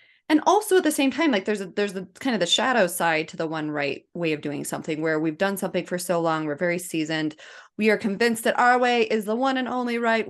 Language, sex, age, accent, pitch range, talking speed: English, female, 20-39, American, 180-230 Hz, 270 wpm